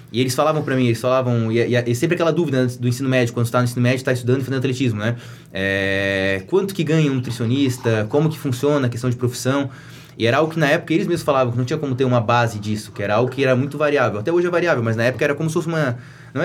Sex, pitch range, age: male, 120-145 Hz, 20-39